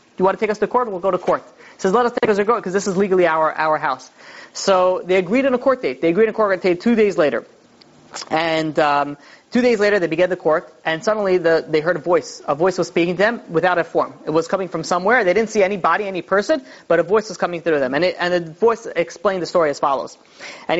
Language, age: English, 30-49